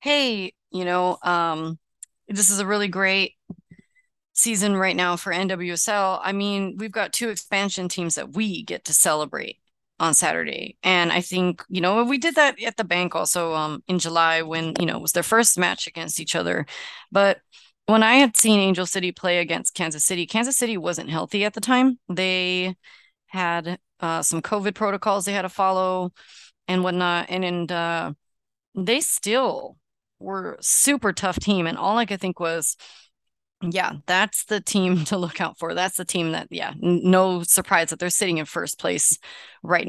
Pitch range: 170-205 Hz